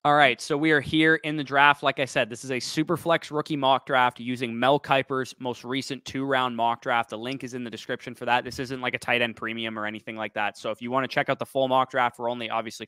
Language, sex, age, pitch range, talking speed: English, male, 20-39, 120-145 Hz, 290 wpm